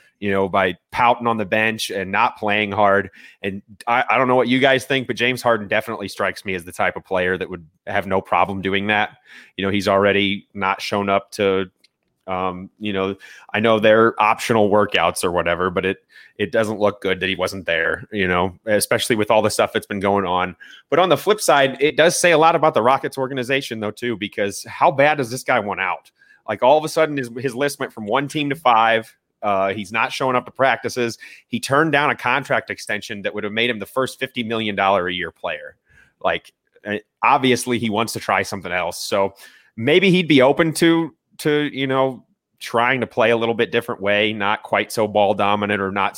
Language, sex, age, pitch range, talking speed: English, male, 30-49, 100-125 Hz, 225 wpm